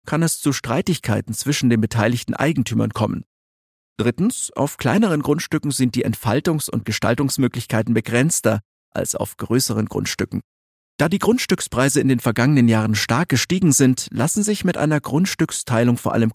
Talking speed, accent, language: 145 wpm, German, German